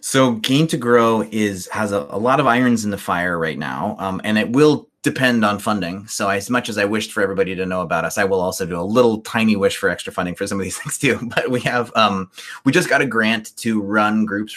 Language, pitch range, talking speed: English, 95-110 Hz, 265 wpm